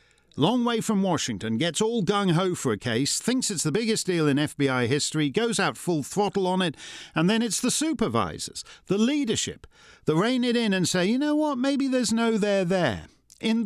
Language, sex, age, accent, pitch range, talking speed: English, male, 50-69, British, 155-235 Hz, 200 wpm